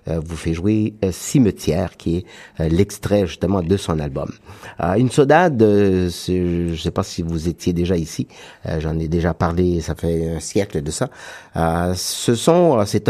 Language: French